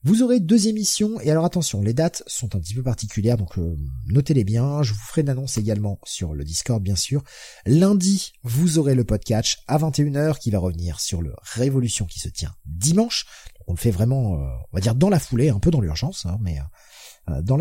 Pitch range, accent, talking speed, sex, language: 95-150 Hz, French, 210 wpm, male, French